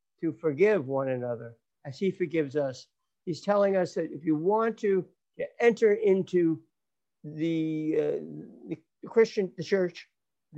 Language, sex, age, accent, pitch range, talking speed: English, male, 60-79, American, 150-210 Hz, 140 wpm